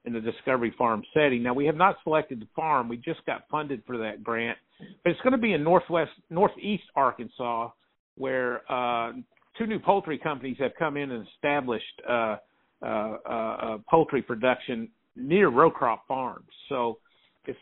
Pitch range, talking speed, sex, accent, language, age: 115-150 Hz, 165 wpm, male, American, English, 50-69